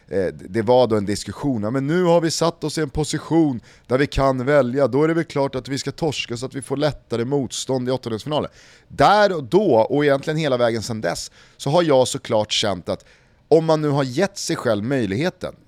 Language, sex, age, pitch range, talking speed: Swedish, male, 30-49, 110-145 Hz, 220 wpm